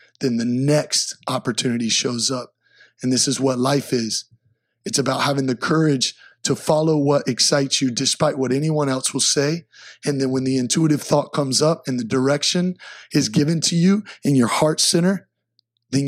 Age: 30-49